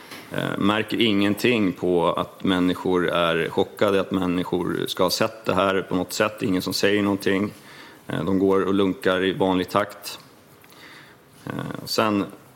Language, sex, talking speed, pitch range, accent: Swedish, male, 140 wpm, 95-105 Hz, native